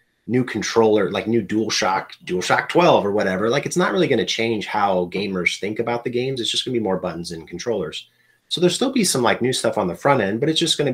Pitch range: 90-115 Hz